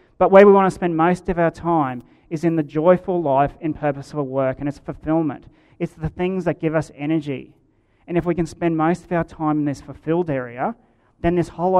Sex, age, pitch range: male, 30-49, 135-170 Hz